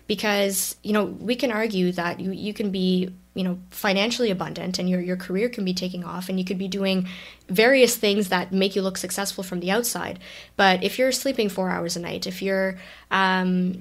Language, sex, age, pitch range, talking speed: English, female, 20-39, 185-210 Hz, 215 wpm